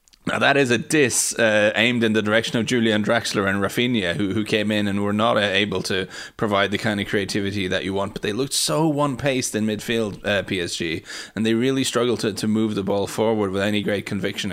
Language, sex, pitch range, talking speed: English, male, 100-120 Hz, 225 wpm